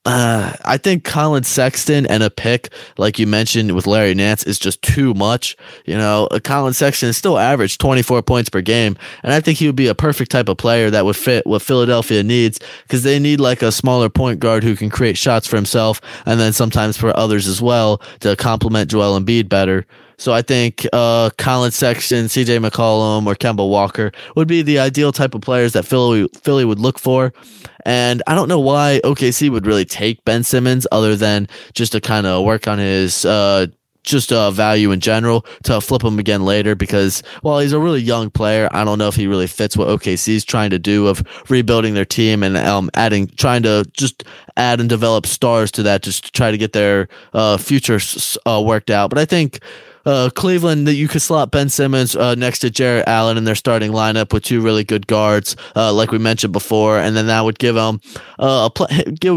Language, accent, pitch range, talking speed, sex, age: English, American, 105-125 Hz, 215 wpm, male, 20-39